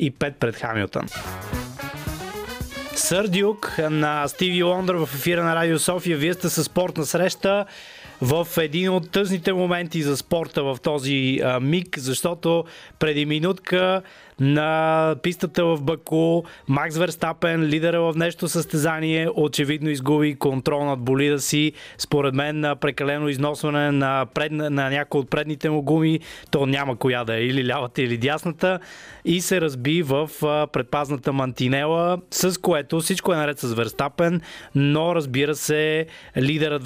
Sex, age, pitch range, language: male, 20-39, 140-165 Hz, Bulgarian